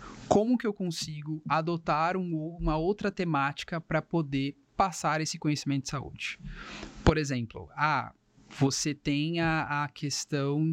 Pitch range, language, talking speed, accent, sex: 135-165 Hz, Portuguese, 130 wpm, Brazilian, male